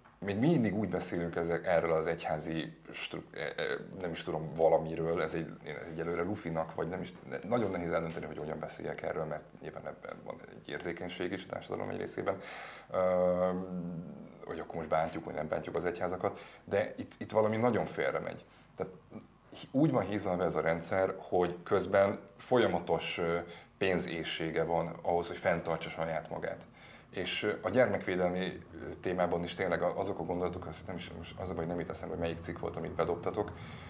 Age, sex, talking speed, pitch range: 30-49, male, 170 wpm, 85-105 Hz